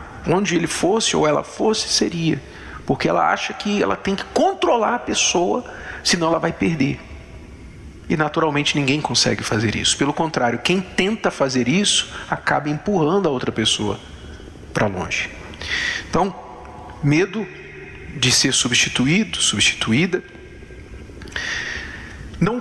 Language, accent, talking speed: Portuguese, Brazilian, 125 wpm